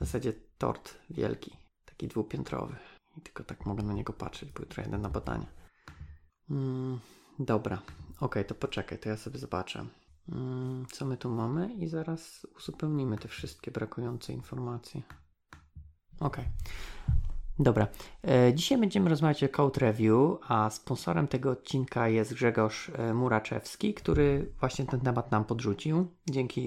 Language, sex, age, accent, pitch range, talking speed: Polish, male, 30-49, native, 110-135 Hz, 145 wpm